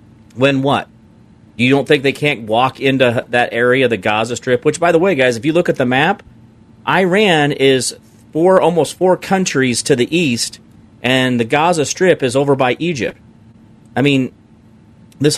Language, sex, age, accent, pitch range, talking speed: English, male, 40-59, American, 110-135 Hz, 170 wpm